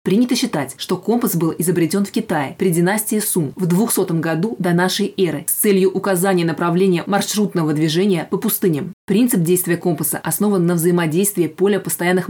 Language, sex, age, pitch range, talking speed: Russian, female, 20-39, 175-195 Hz, 160 wpm